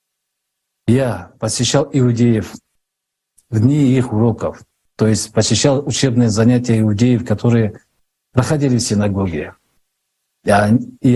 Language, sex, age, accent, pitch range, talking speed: Russian, male, 50-69, native, 110-140 Hz, 100 wpm